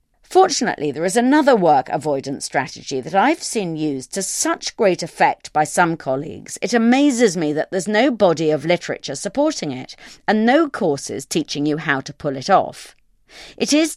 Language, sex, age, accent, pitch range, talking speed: English, female, 40-59, British, 150-250 Hz, 175 wpm